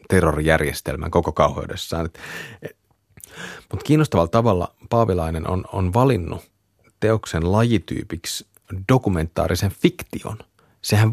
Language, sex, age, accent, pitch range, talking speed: Finnish, male, 30-49, native, 85-115 Hz, 80 wpm